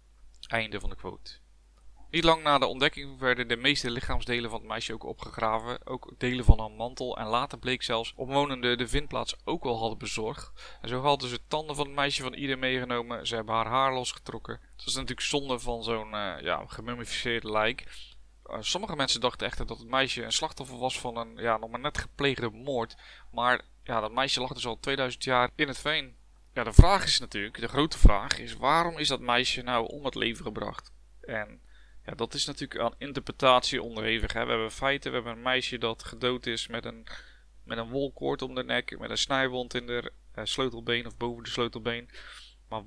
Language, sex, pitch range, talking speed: Dutch, male, 115-130 Hz, 205 wpm